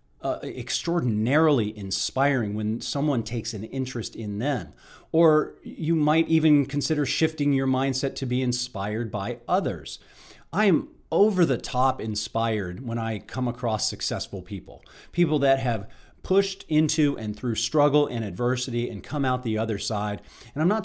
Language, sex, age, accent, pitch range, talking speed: English, male, 40-59, American, 105-135 Hz, 155 wpm